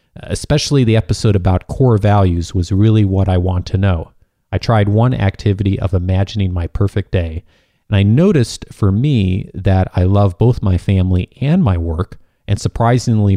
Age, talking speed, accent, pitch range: 40-59, 170 wpm, American, 95-115 Hz